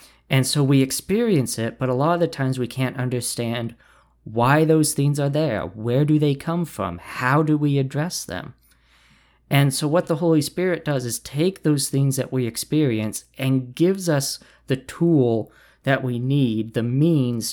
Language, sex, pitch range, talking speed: English, male, 115-150 Hz, 180 wpm